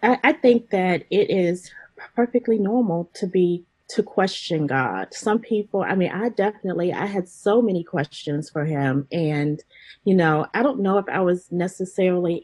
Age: 30-49